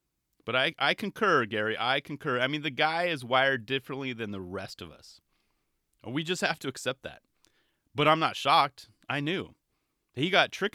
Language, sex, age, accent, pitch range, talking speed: English, male, 30-49, American, 105-140 Hz, 190 wpm